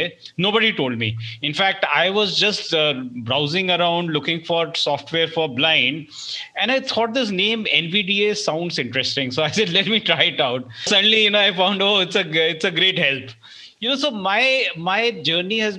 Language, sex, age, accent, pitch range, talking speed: English, male, 30-49, Indian, 140-190 Hz, 195 wpm